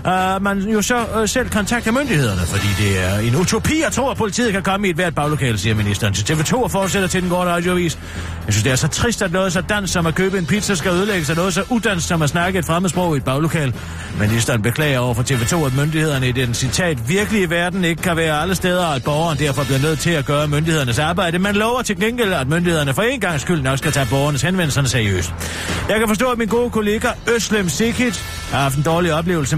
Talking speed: 235 wpm